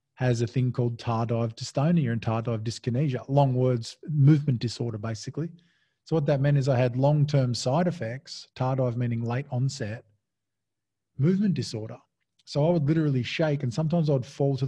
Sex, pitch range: male, 120-150 Hz